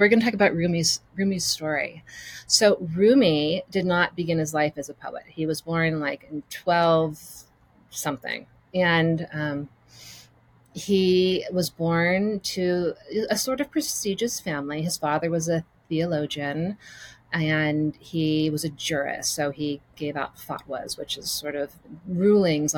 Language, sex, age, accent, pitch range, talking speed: English, female, 30-49, American, 150-190 Hz, 150 wpm